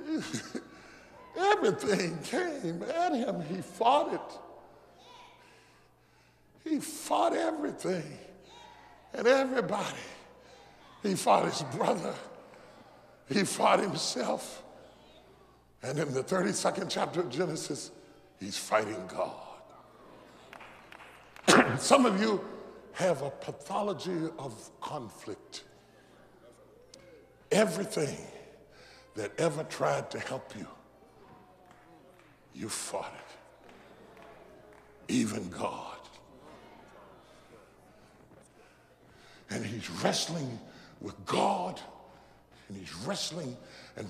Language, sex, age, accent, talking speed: English, female, 60-79, American, 80 wpm